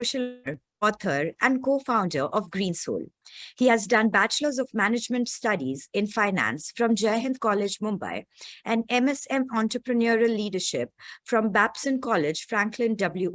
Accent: Indian